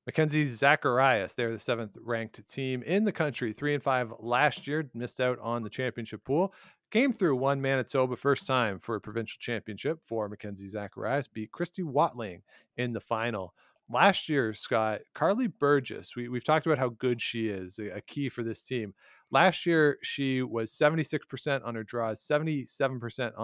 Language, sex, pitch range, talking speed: English, male, 110-140 Hz, 170 wpm